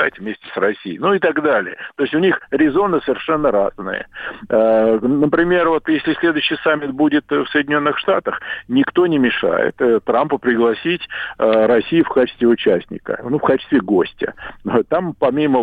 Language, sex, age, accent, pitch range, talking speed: Russian, male, 50-69, native, 115-165 Hz, 145 wpm